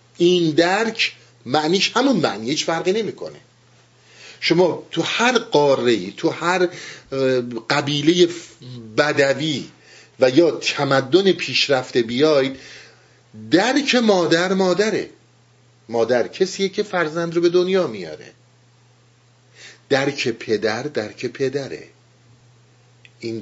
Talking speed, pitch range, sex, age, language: 95 wpm, 120-165 Hz, male, 50-69, Persian